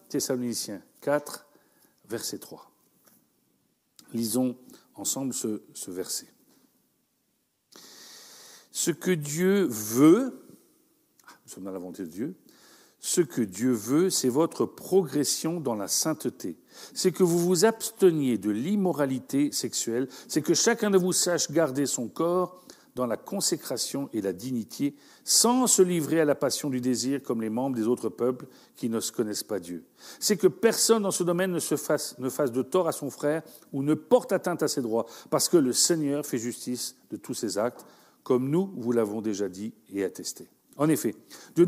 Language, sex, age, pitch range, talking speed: French, male, 50-69, 120-180 Hz, 175 wpm